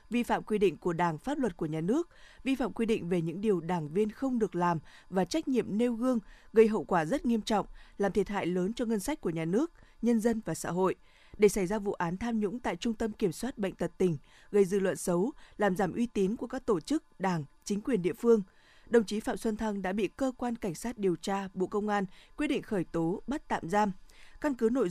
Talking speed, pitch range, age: 260 wpm, 185-235 Hz, 20-39